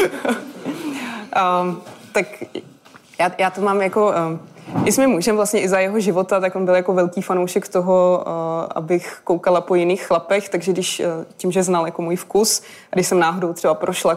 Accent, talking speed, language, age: native, 180 wpm, Czech, 20-39